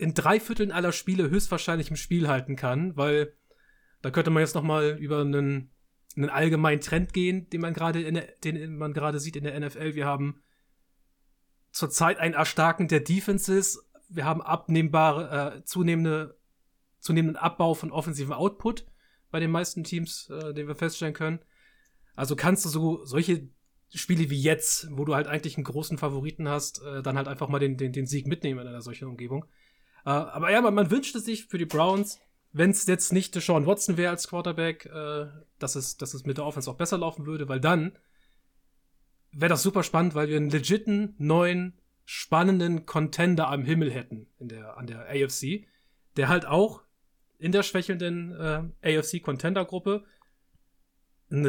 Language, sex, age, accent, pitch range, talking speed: German, male, 30-49, German, 140-175 Hz, 175 wpm